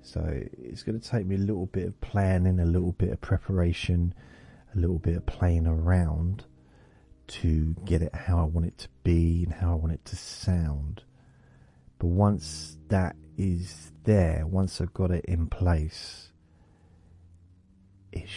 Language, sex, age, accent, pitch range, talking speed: English, male, 40-59, British, 85-100 Hz, 165 wpm